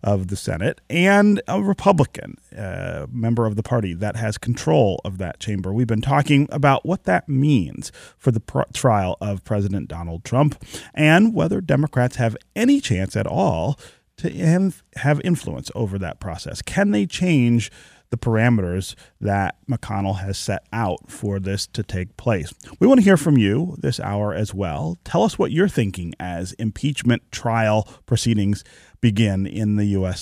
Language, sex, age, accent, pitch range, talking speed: English, male, 30-49, American, 100-140 Hz, 165 wpm